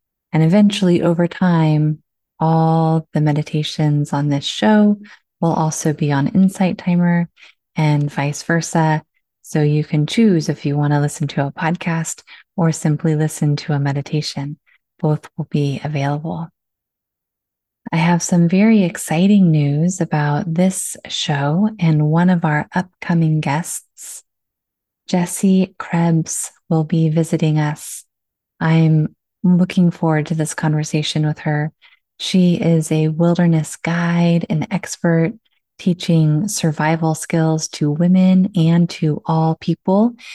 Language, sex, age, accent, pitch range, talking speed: English, female, 20-39, American, 155-175 Hz, 130 wpm